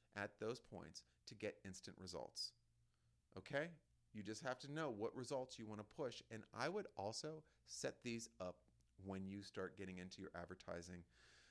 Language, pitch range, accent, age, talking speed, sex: English, 90-115 Hz, American, 40-59, 170 wpm, male